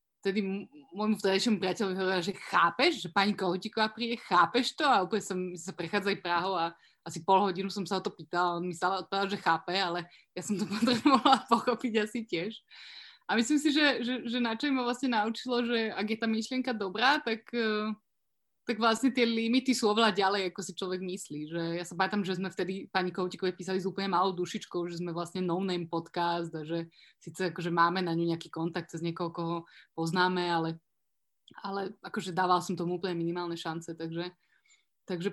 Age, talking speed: 20-39, 190 wpm